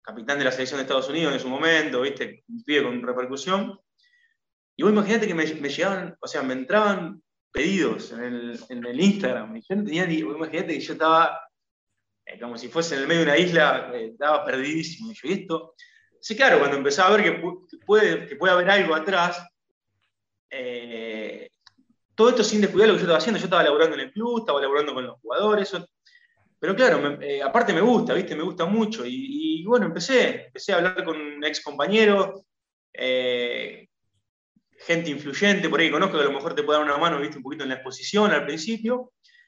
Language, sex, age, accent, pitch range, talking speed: Spanish, male, 20-39, Argentinian, 145-215 Hz, 200 wpm